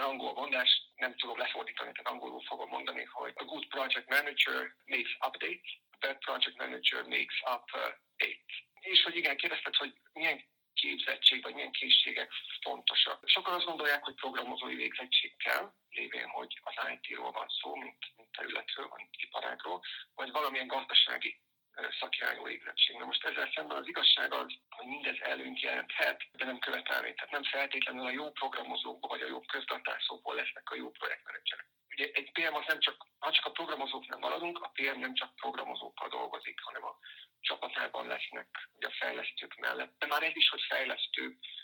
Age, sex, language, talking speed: 50-69, male, Hungarian, 165 wpm